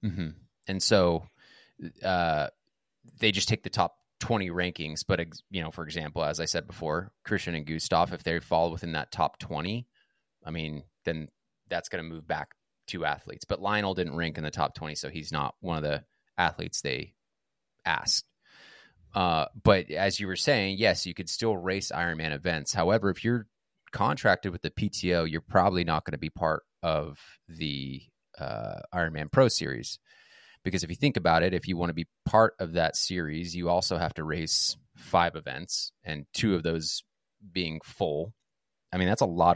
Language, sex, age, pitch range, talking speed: English, male, 20-39, 80-95 Hz, 190 wpm